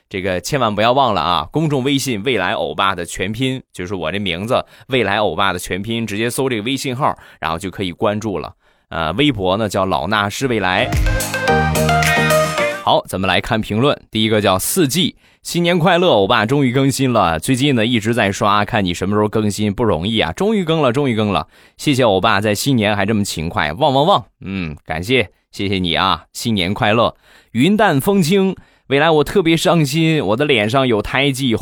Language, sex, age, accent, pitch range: Chinese, male, 20-39, native, 100-140 Hz